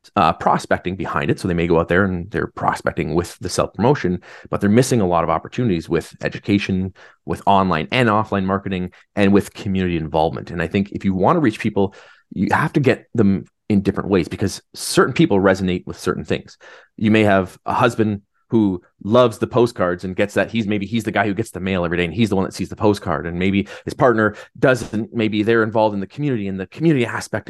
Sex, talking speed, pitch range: male, 225 wpm, 90-110 Hz